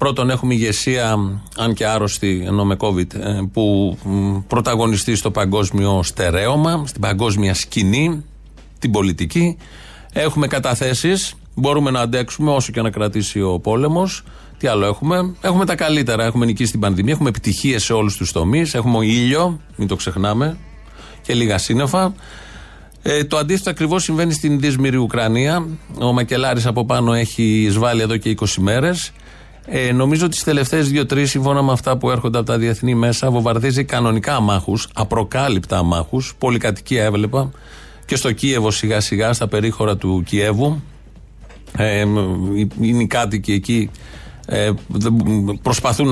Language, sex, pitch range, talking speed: Greek, male, 105-135 Hz, 145 wpm